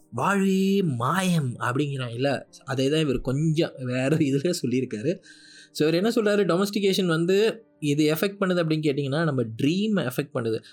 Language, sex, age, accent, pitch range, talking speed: Tamil, male, 20-39, native, 135-180 Hz, 140 wpm